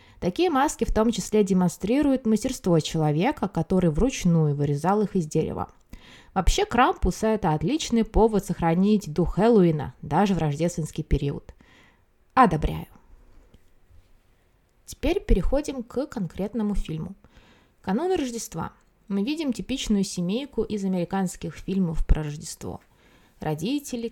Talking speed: 110 wpm